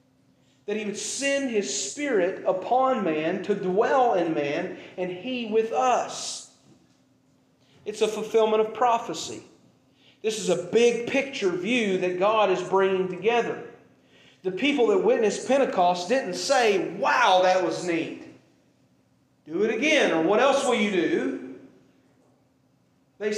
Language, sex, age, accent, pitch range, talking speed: English, male, 40-59, American, 205-275 Hz, 135 wpm